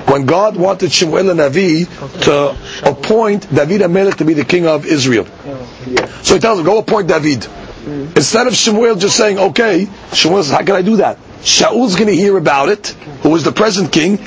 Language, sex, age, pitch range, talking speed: English, male, 40-59, 155-215 Hz, 200 wpm